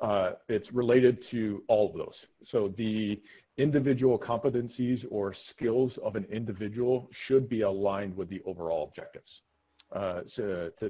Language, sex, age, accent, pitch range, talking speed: English, male, 40-59, American, 100-125 Hz, 145 wpm